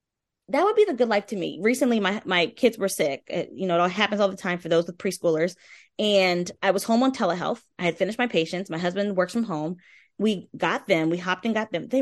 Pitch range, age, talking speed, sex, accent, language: 180-230 Hz, 20-39, 255 wpm, female, American, English